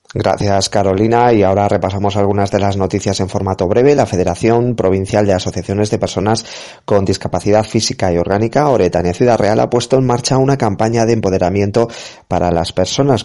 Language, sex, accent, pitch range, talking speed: Spanish, male, Spanish, 90-115 Hz, 170 wpm